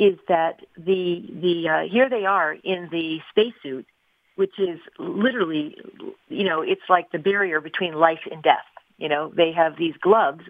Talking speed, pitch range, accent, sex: 170 wpm, 170-215 Hz, American, female